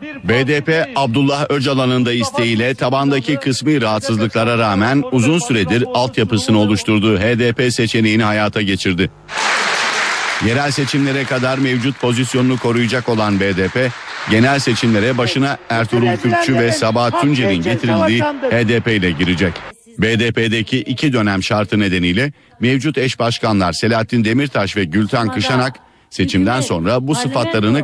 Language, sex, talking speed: Turkish, male, 115 wpm